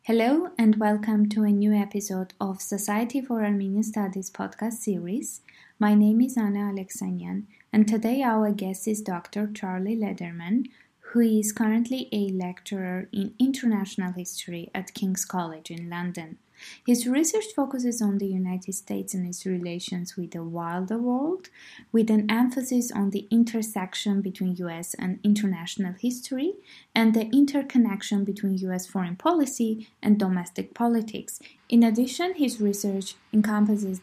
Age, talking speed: 20-39, 140 wpm